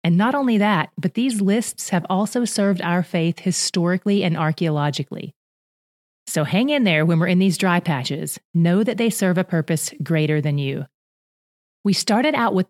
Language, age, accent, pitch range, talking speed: English, 30-49, American, 155-200 Hz, 180 wpm